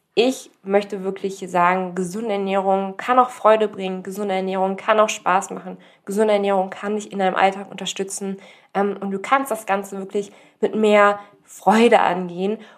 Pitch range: 180-210 Hz